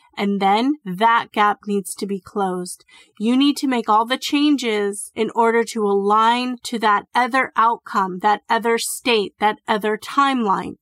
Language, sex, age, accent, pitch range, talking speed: English, female, 30-49, American, 210-250 Hz, 160 wpm